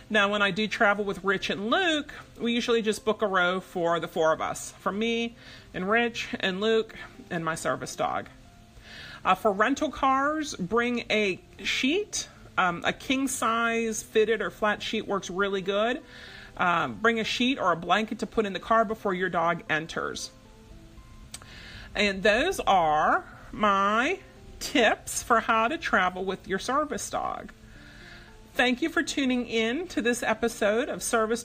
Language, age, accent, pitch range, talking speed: English, 40-59, American, 195-260 Hz, 165 wpm